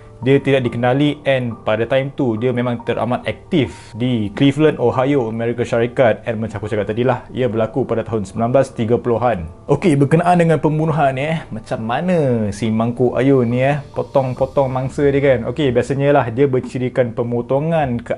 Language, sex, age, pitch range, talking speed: Malay, male, 20-39, 115-140 Hz, 165 wpm